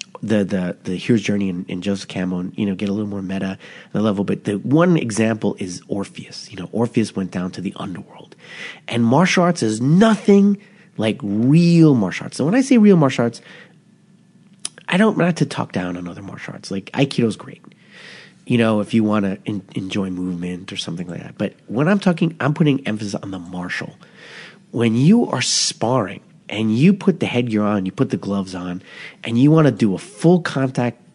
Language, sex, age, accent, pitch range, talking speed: English, male, 30-49, American, 95-145 Hz, 200 wpm